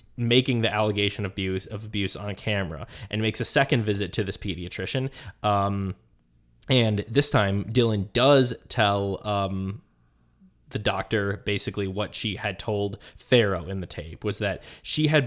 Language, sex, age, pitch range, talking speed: English, male, 20-39, 95-115 Hz, 155 wpm